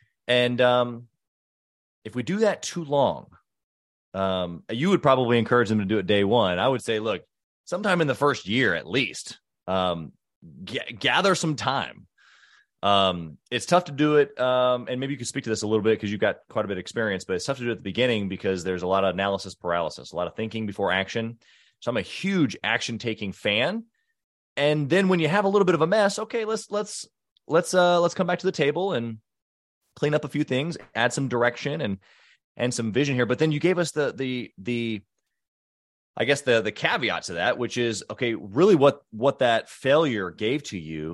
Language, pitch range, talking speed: English, 100-145 Hz, 220 wpm